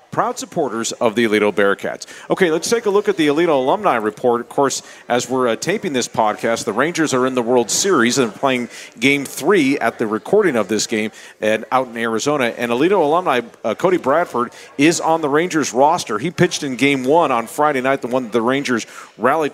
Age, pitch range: 40-59, 115-145 Hz